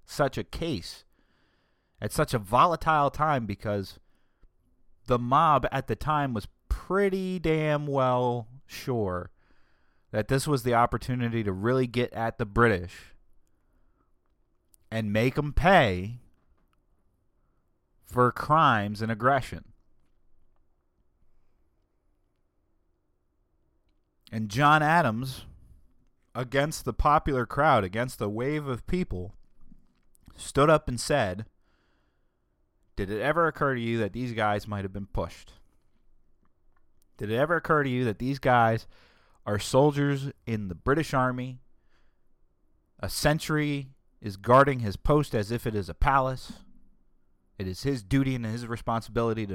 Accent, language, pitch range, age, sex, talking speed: American, English, 90-135 Hz, 30-49, male, 125 wpm